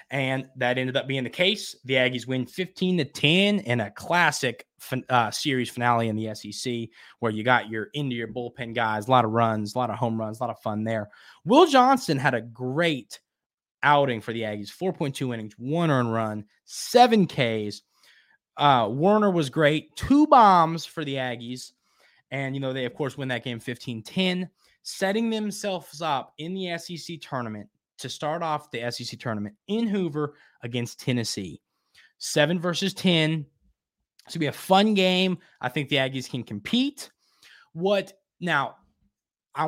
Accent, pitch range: American, 120-175 Hz